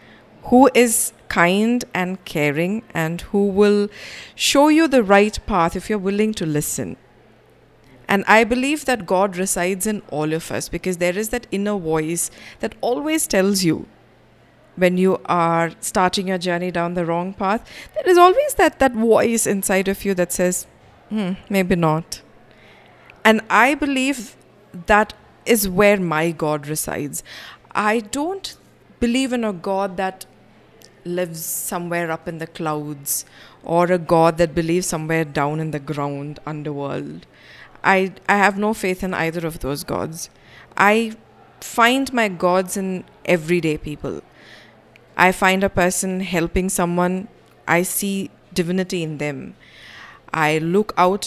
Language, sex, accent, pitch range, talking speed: English, female, Indian, 165-215 Hz, 145 wpm